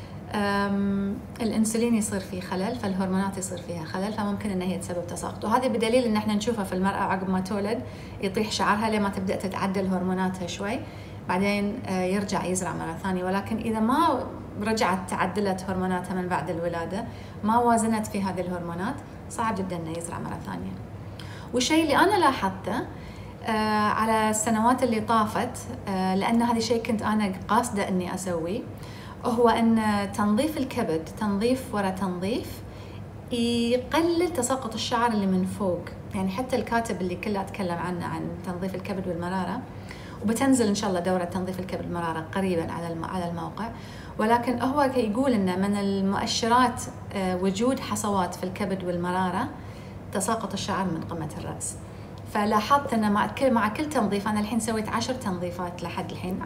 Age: 30-49